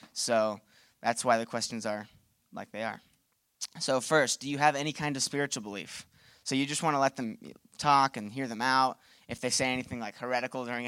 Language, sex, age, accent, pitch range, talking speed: English, male, 20-39, American, 115-140 Hz, 210 wpm